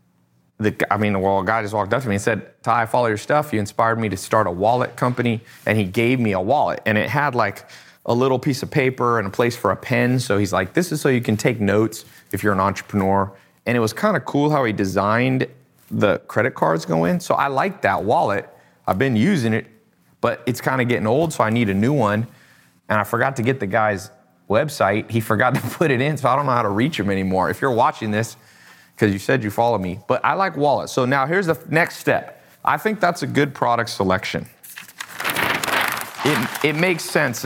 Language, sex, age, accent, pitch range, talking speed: English, male, 30-49, American, 105-135 Hz, 240 wpm